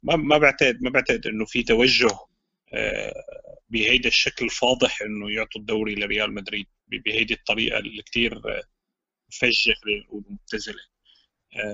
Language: Arabic